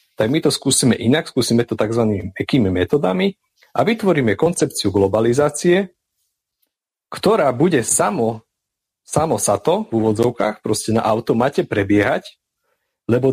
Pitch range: 105-140 Hz